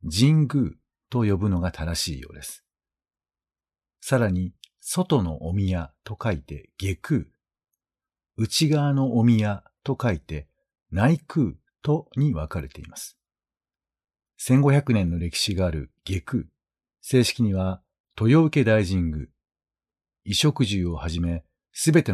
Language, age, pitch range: Japanese, 50-69, 80-120 Hz